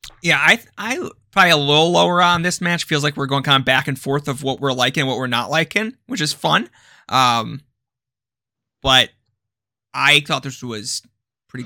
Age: 20-39